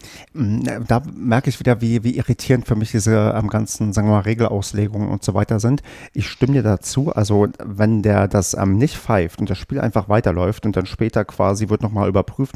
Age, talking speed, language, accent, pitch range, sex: 40-59, 205 wpm, German, German, 105-120 Hz, male